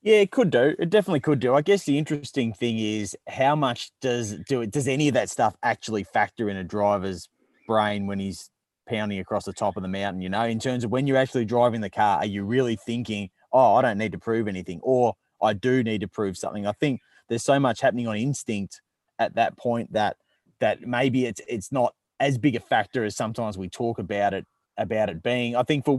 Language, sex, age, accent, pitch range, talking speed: English, male, 20-39, Australian, 105-130 Hz, 235 wpm